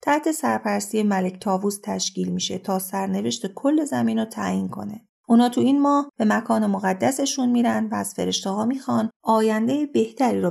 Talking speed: 155 wpm